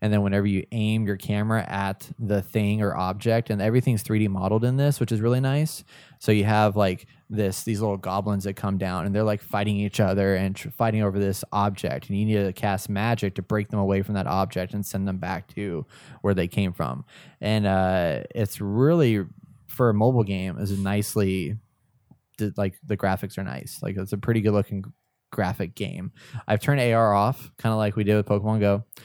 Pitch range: 100-115 Hz